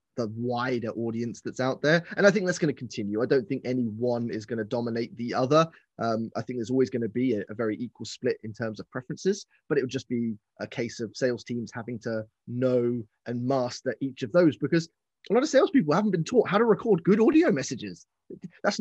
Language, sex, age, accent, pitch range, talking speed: English, male, 20-39, British, 120-180 Hz, 225 wpm